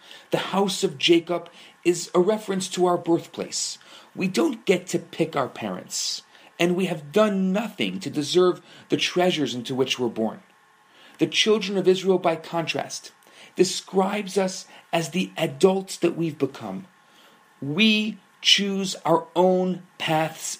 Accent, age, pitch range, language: Canadian, 40-59, 160-195 Hz, English